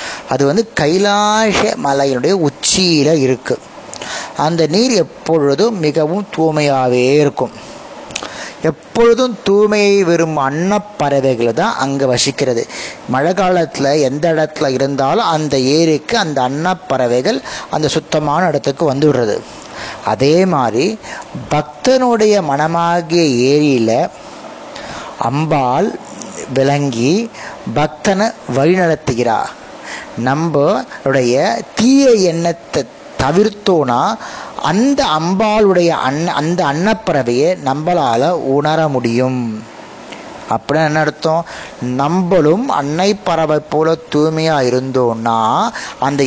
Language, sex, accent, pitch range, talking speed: Tamil, male, native, 135-185 Hz, 85 wpm